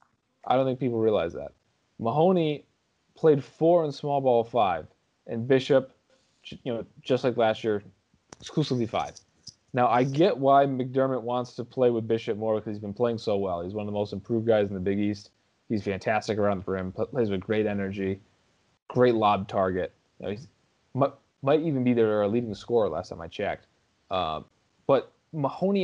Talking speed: 180 wpm